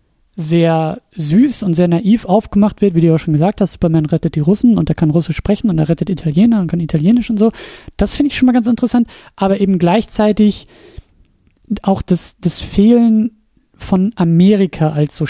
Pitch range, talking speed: 170-220 Hz, 190 wpm